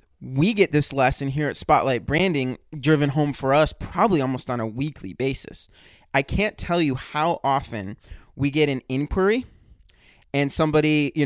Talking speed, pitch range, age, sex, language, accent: 165 wpm, 120-155 Hz, 20-39, male, English, American